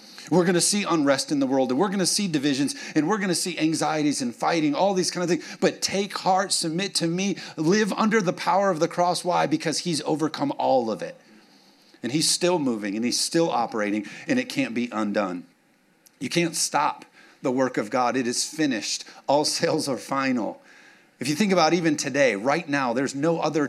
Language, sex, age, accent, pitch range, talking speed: English, male, 40-59, American, 145-200 Hz, 215 wpm